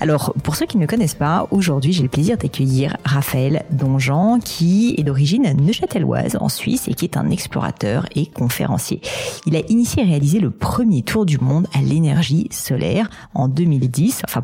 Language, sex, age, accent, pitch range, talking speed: French, female, 40-59, French, 140-175 Hz, 180 wpm